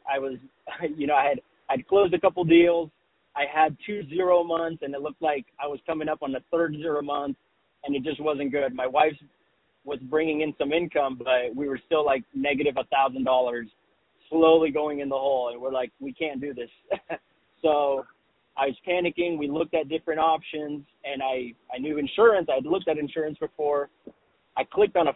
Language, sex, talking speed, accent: English, male, 205 wpm, American